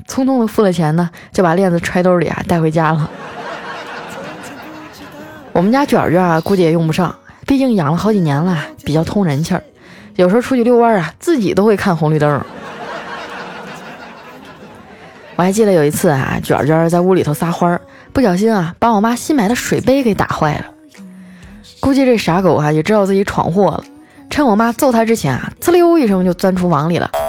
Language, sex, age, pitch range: Chinese, female, 20-39, 170-235 Hz